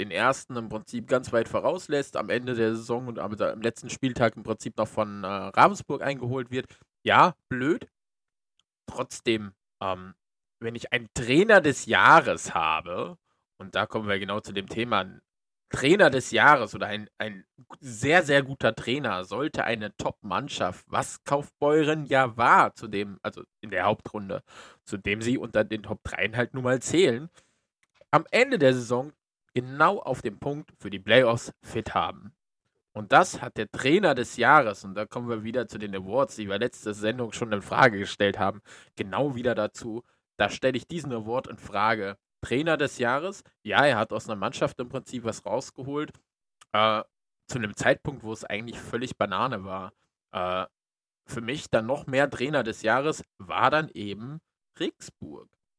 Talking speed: 170 wpm